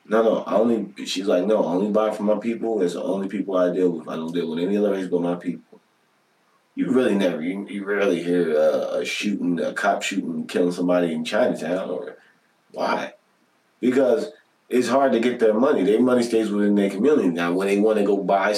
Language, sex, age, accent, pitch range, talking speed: English, male, 30-49, American, 100-130 Hz, 225 wpm